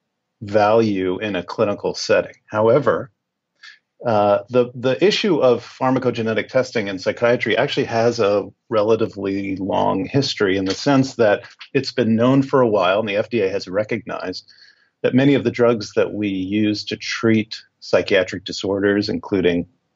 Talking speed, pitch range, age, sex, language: 145 wpm, 100-125 Hz, 50-69, male, English